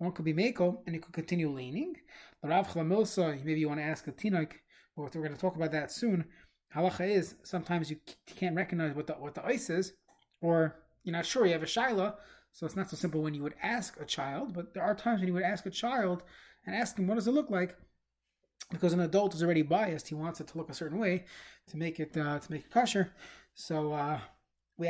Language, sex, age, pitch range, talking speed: English, male, 20-39, 155-190 Hz, 235 wpm